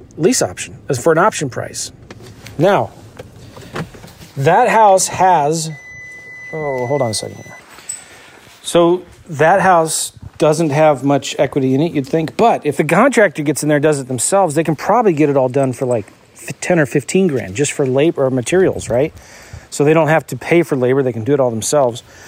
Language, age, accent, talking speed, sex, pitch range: English, 40-59, American, 190 wpm, male, 125-155 Hz